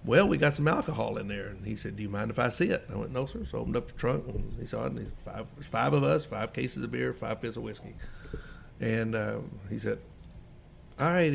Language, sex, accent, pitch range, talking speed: English, male, American, 115-150 Hz, 275 wpm